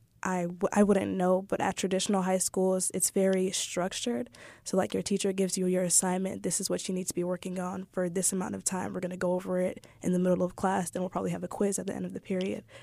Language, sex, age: English, female, 20-39